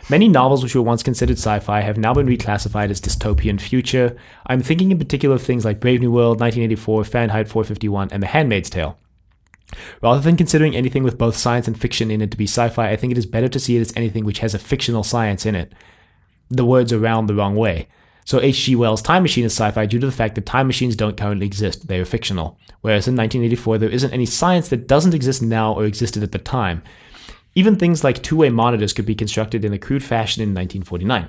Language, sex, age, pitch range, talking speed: English, male, 20-39, 105-125 Hz, 230 wpm